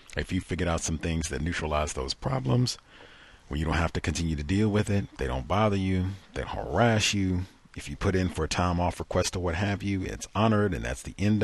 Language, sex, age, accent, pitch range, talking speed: English, male, 40-59, American, 75-100 Hz, 245 wpm